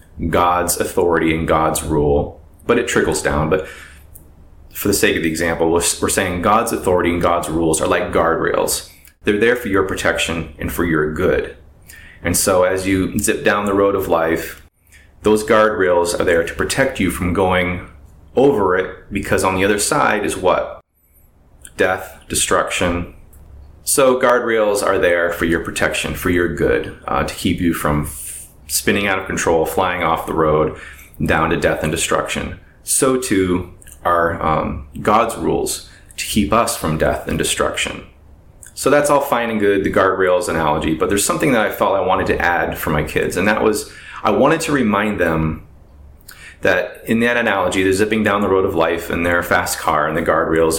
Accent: American